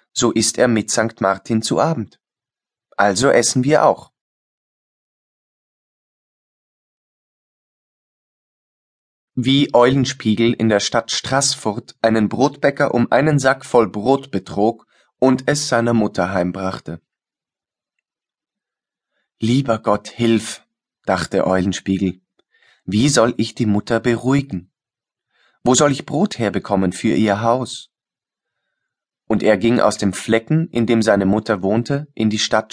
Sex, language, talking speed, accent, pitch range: male, German, 115 wpm, German, 100-125 Hz